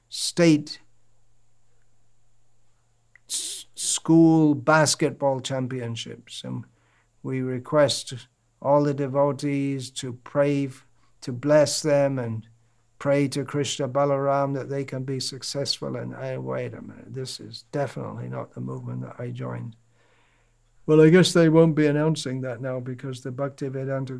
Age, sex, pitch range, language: 60-79, male, 120-145 Hz, English